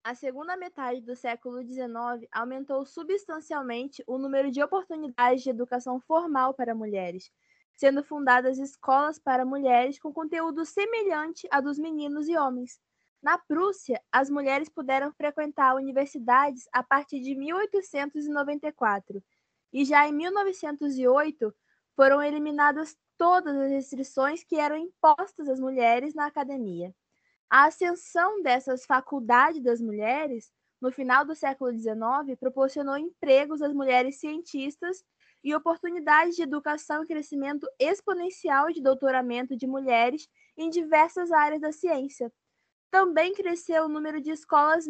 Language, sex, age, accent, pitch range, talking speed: Portuguese, female, 20-39, Brazilian, 260-320 Hz, 125 wpm